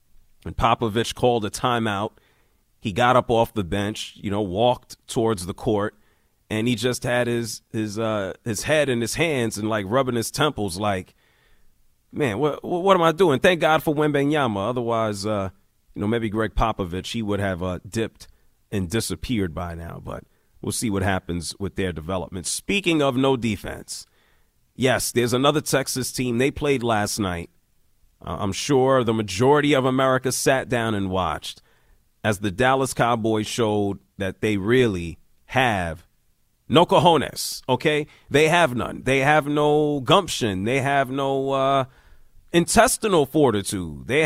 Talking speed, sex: 160 wpm, male